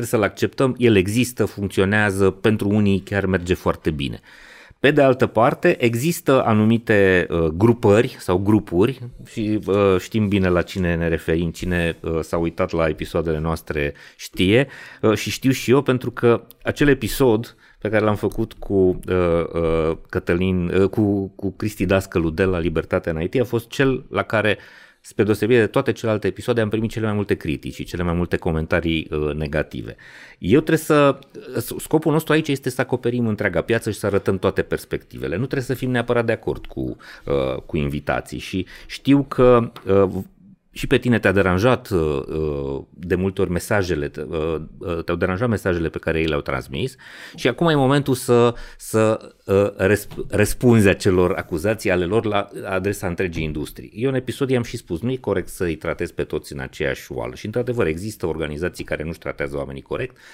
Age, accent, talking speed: 30-49, native, 175 wpm